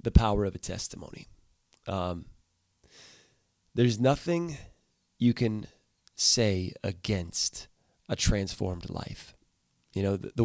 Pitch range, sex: 95-120 Hz, male